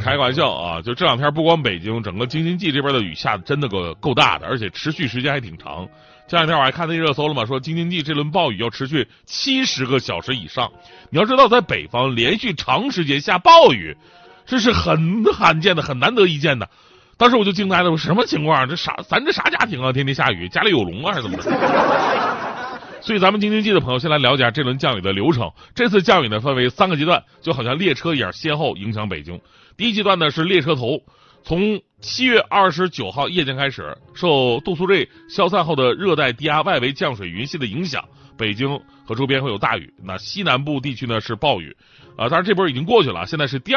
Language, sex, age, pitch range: Chinese, male, 30-49, 120-170 Hz